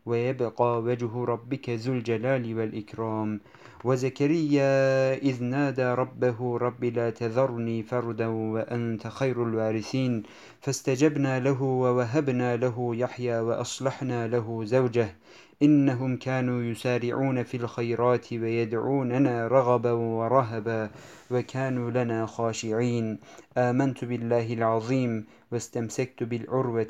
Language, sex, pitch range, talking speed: Turkish, male, 115-130 Hz, 90 wpm